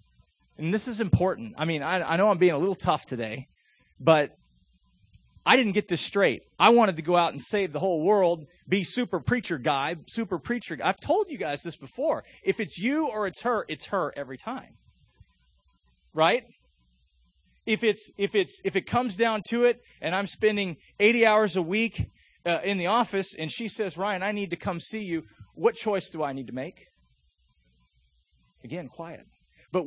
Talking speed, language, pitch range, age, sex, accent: 195 wpm, English, 125-190 Hz, 30-49, male, American